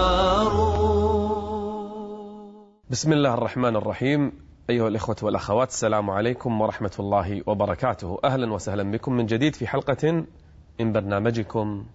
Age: 30-49